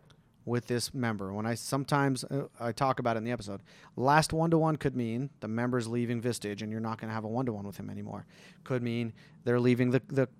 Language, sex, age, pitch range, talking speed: English, male, 30-49, 110-135 Hz, 225 wpm